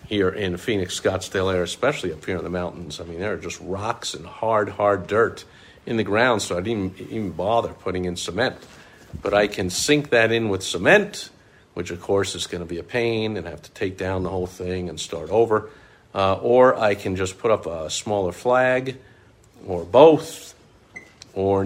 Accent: American